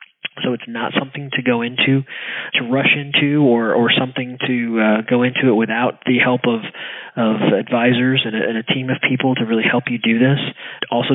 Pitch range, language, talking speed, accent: 120-135 Hz, English, 210 wpm, American